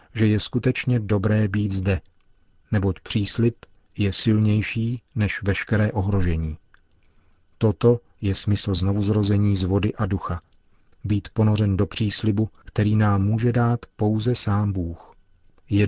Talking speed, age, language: 125 wpm, 40-59, Czech